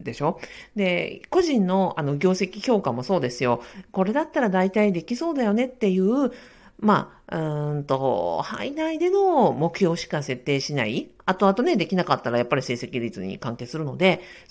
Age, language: 50-69, Japanese